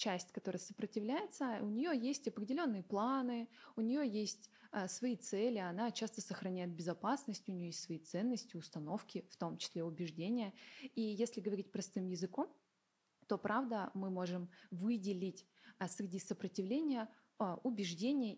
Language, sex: Russian, female